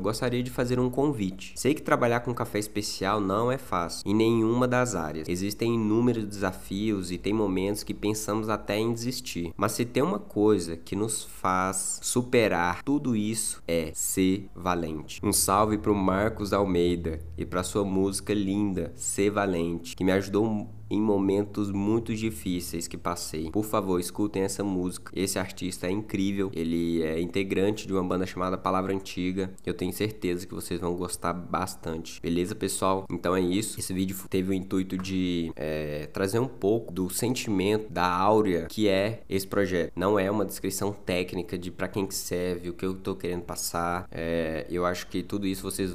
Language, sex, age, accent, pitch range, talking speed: English, male, 20-39, Brazilian, 90-105 Hz, 180 wpm